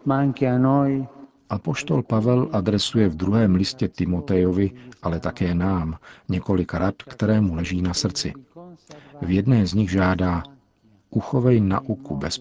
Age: 50-69